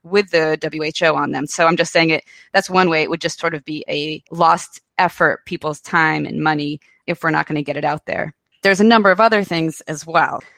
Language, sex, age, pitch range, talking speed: English, female, 20-39, 160-190 Hz, 245 wpm